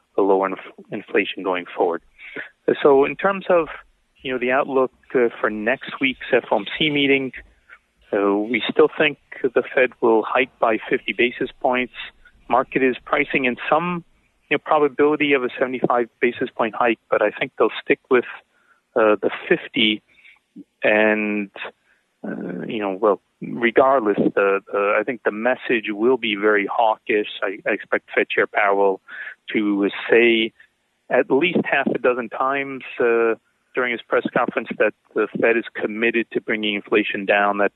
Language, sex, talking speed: English, male, 160 wpm